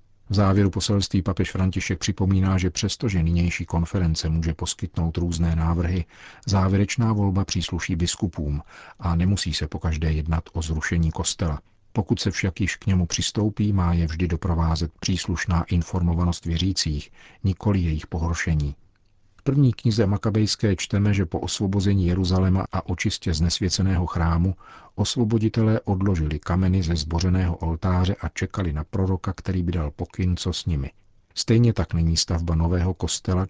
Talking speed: 140 wpm